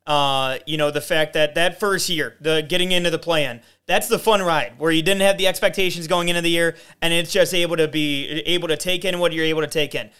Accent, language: American, English